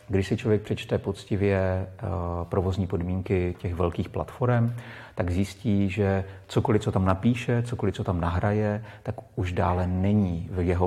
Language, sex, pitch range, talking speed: Czech, male, 90-110 Hz, 150 wpm